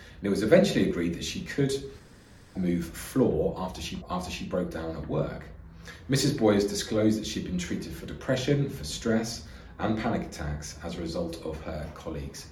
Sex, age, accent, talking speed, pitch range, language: male, 30-49, British, 180 wpm, 80-100 Hz, English